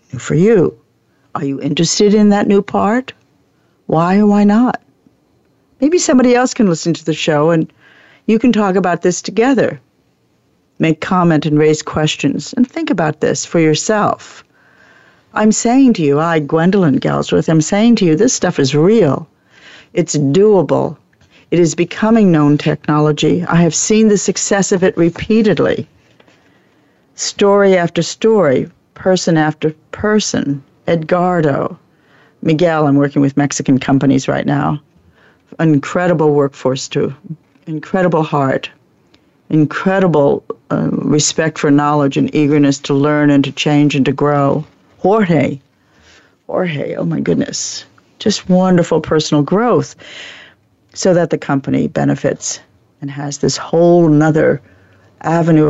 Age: 60-79